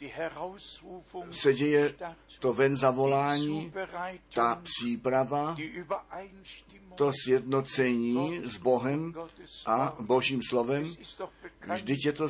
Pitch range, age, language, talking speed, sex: 125-165 Hz, 50-69, Czech, 85 wpm, male